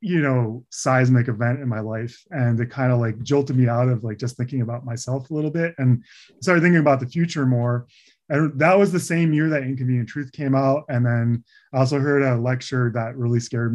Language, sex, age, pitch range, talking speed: English, male, 20-39, 120-145 Hz, 225 wpm